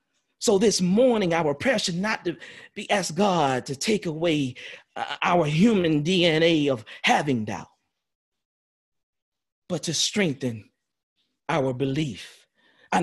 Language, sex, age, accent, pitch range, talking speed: English, male, 40-59, American, 160-240 Hz, 115 wpm